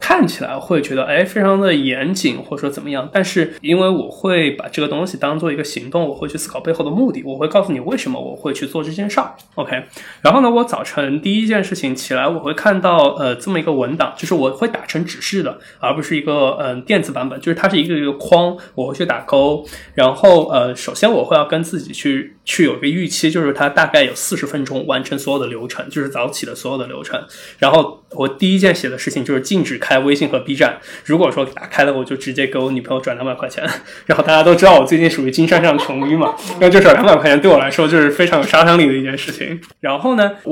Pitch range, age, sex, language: 135-180 Hz, 20-39, male, Chinese